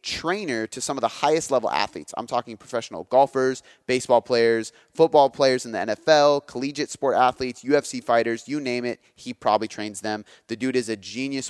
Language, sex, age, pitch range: English, male, 30-49, 110-145 Hz